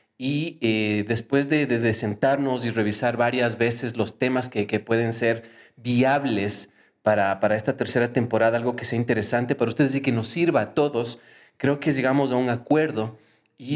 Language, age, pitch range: Spanish, 30-49, 115-140 Hz